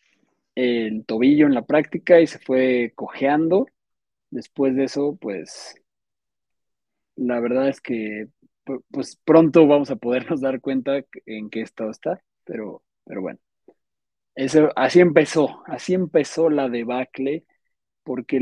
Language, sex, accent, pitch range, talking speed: Spanish, male, Mexican, 125-155 Hz, 125 wpm